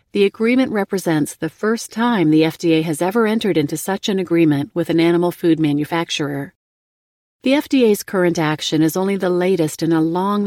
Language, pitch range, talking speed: English, 160-200 Hz, 180 wpm